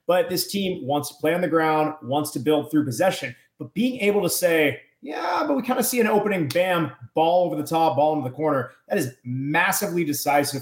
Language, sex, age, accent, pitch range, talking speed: English, male, 30-49, American, 140-180 Hz, 225 wpm